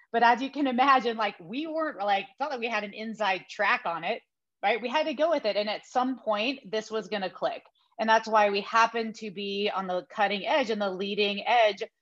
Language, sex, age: English, female, 30-49